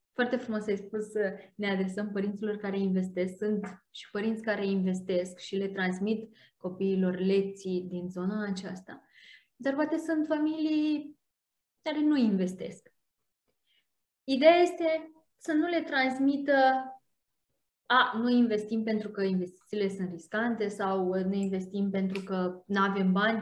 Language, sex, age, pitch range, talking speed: Romanian, female, 20-39, 205-340 Hz, 135 wpm